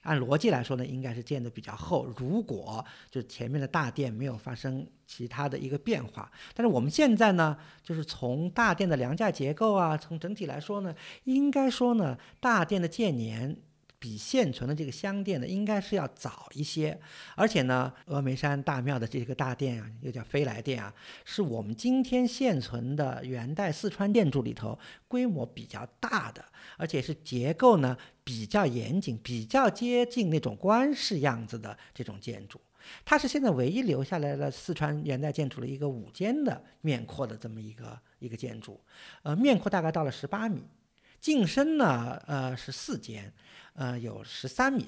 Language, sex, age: Chinese, male, 50-69